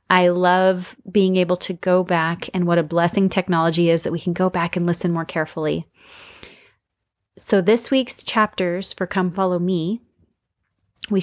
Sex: female